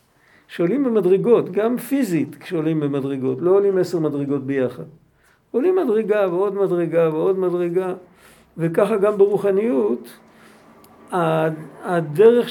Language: Hebrew